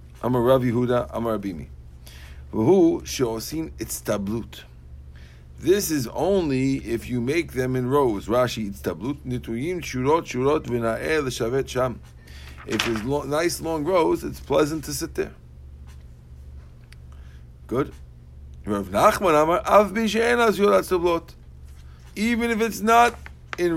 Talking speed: 130 wpm